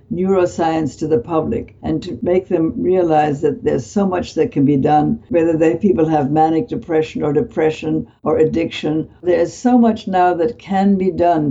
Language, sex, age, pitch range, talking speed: English, female, 60-79, 155-180 Hz, 180 wpm